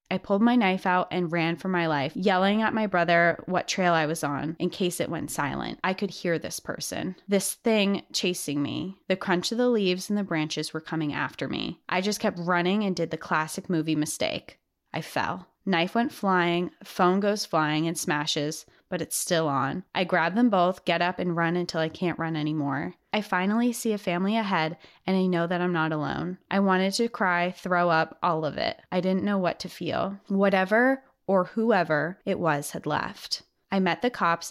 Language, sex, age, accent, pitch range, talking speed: English, female, 20-39, American, 160-195 Hz, 210 wpm